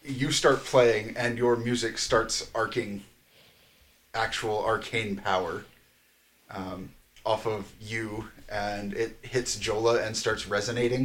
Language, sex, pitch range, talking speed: English, male, 85-115 Hz, 120 wpm